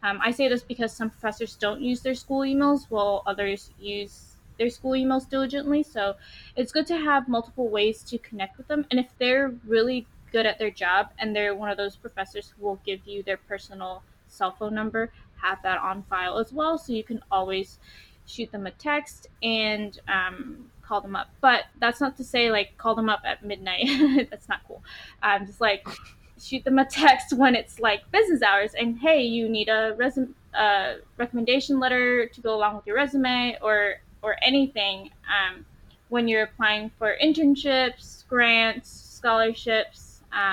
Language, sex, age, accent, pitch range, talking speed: English, female, 10-29, American, 205-260 Hz, 185 wpm